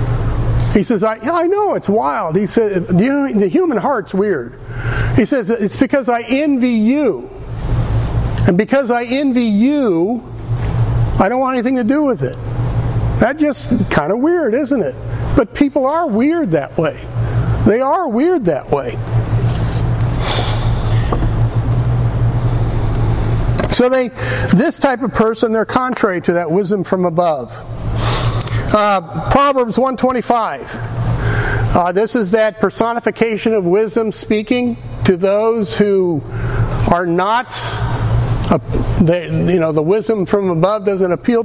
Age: 50-69